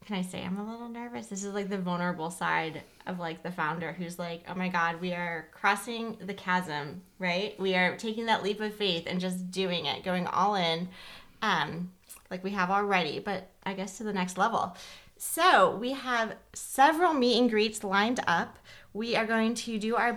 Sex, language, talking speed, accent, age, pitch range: female, English, 205 wpm, American, 20-39, 185-215 Hz